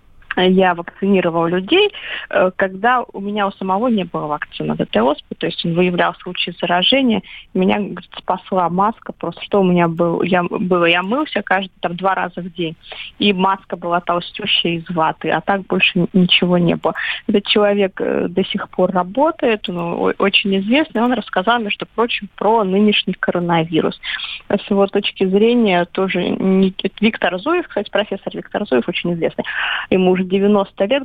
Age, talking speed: 20-39, 160 wpm